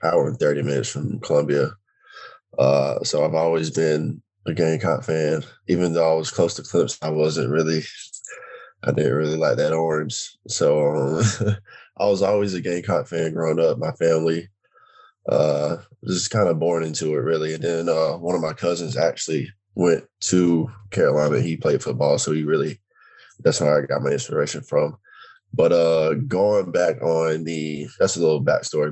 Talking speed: 175 wpm